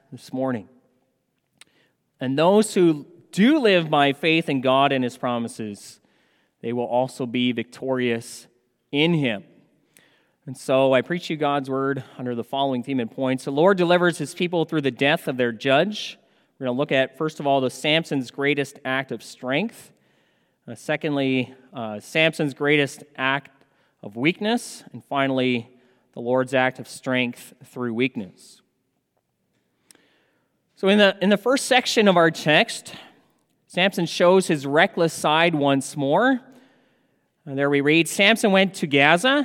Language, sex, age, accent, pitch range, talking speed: English, male, 30-49, American, 130-180 Hz, 155 wpm